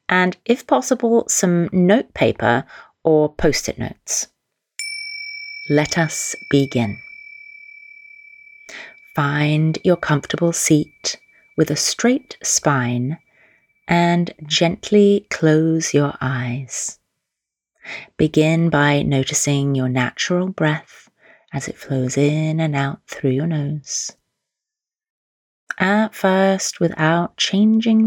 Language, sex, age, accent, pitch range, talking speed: English, female, 30-49, British, 145-210 Hz, 95 wpm